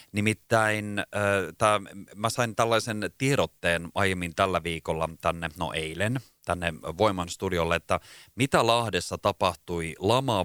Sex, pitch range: male, 85-110 Hz